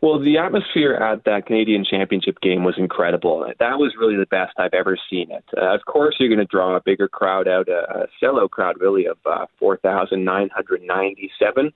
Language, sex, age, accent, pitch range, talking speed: English, male, 20-39, American, 95-155 Hz, 195 wpm